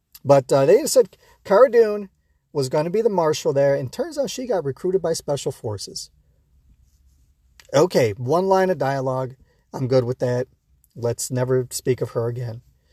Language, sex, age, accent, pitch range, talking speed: English, male, 40-59, American, 115-130 Hz, 170 wpm